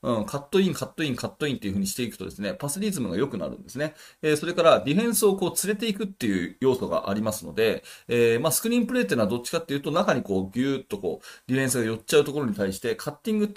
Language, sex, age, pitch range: Japanese, male, 30-49, 125-195 Hz